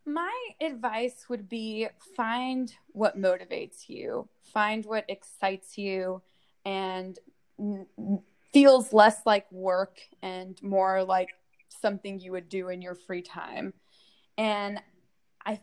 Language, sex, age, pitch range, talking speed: English, female, 20-39, 190-215 Hz, 115 wpm